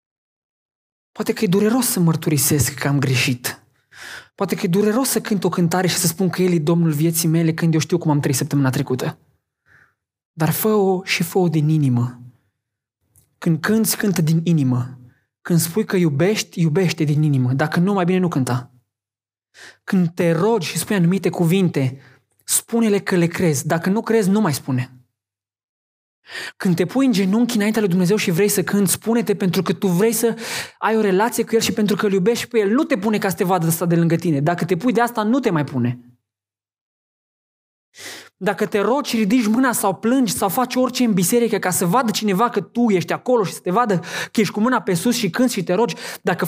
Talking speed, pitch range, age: 210 wpm, 145-220 Hz, 20-39